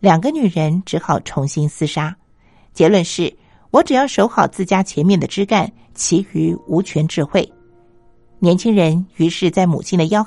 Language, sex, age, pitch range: Chinese, female, 50-69, 160-210 Hz